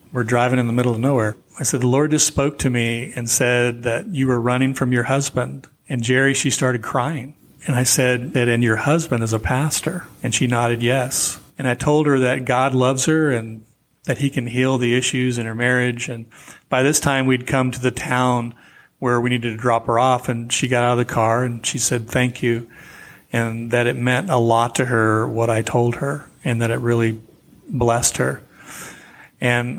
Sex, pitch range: male, 120-140 Hz